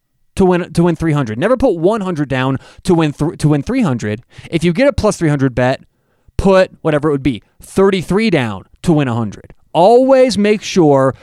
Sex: male